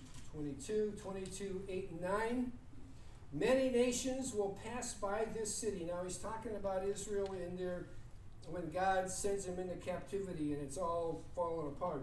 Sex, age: male, 50-69